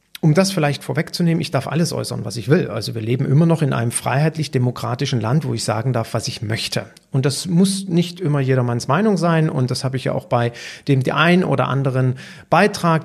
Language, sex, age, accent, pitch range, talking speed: German, male, 40-59, German, 130-185 Hz, 220 wpm